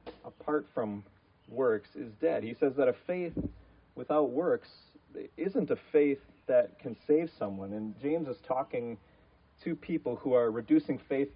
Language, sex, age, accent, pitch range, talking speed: English, male, 30-49, American, 110-150 Hz, 155 wpm